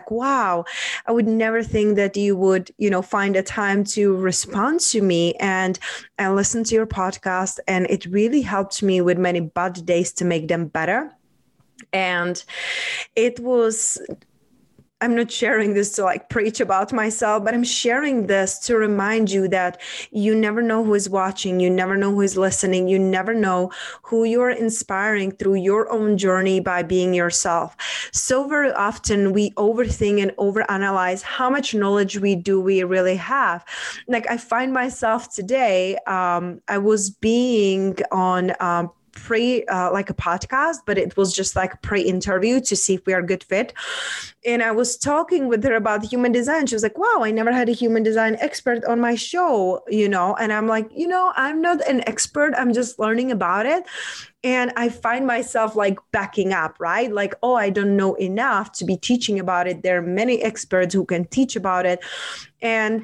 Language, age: English, 20-39